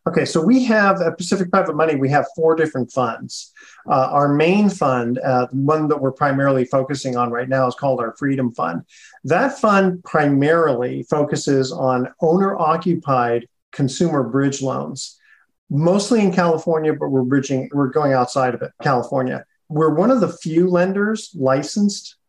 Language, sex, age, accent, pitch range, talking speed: English, male, 40-59, American, 135-175 Hz, 160 wpm